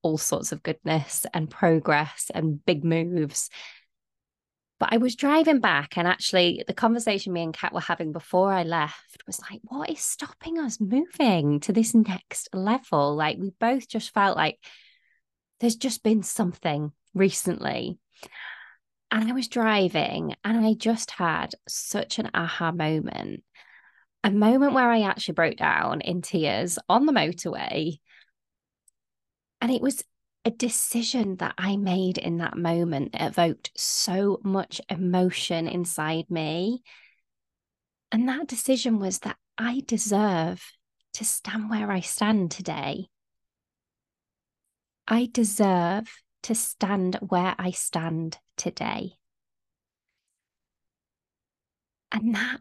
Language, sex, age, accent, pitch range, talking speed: English, female, 20-39, British, 170-230 Hz, 130 wpm